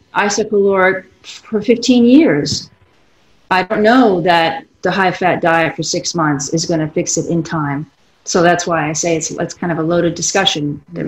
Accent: American